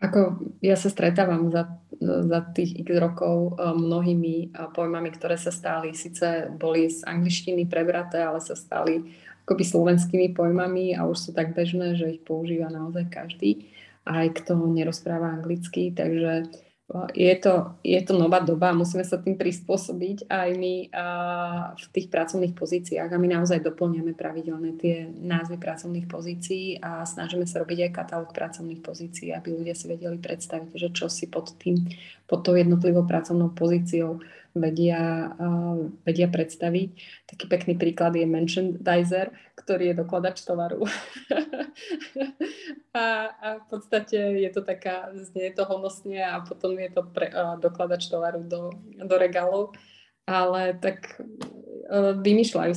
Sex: female